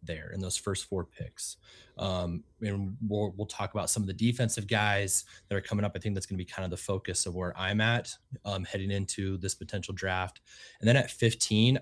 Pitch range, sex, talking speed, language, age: 95-110 Hz, male, 230 wpm, English, 20-39